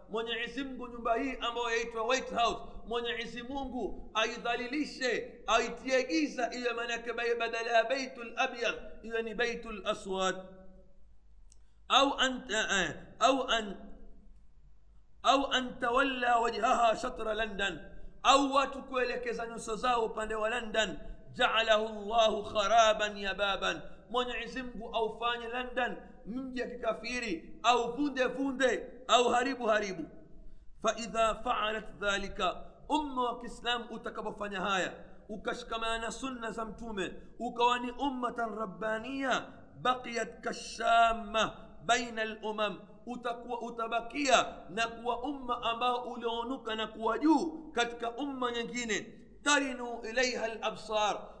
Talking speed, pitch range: 95 wpm, 220-245 Hz